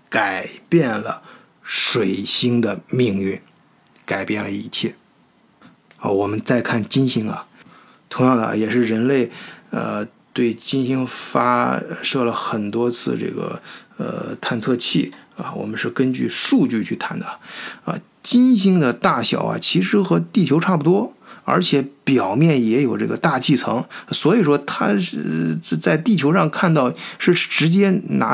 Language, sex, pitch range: Chinese, male, 125-195 Hz